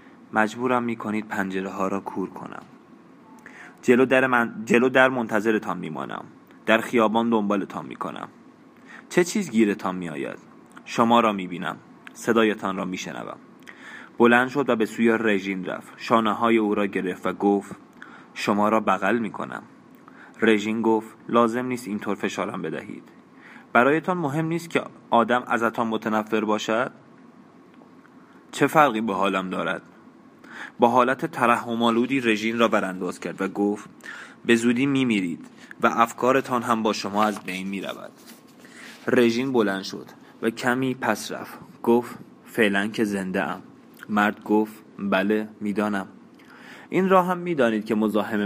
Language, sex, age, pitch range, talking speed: Persian, male, 20-39, 105-125 Hz, 145 wpm